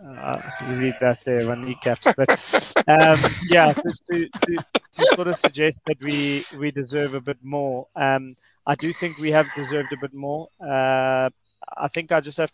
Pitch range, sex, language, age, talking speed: 130-145 Hz, male, English, 20-39, 190 wpm